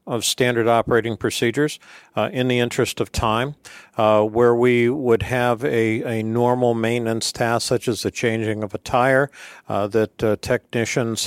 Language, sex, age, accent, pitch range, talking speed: English, male, 50-69, American, 110-135 Hz, 165 wpm